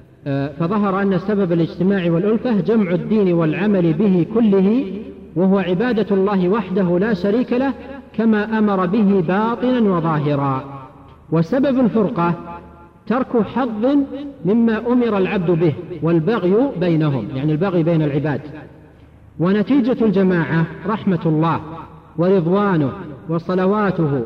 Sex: male